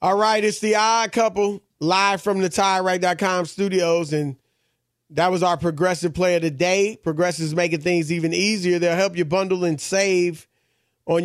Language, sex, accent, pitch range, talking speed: English, male, American, 155-195 Hz, 165 wpm